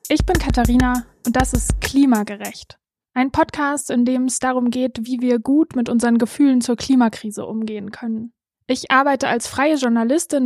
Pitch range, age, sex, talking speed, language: 235-265 Hz, 20-39, female, 165 wpm, German